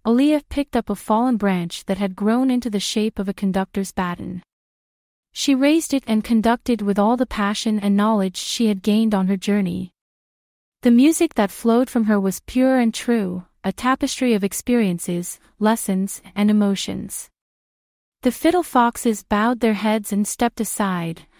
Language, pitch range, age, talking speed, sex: English, 195-245 Hz, 30-49, 165 wpm, female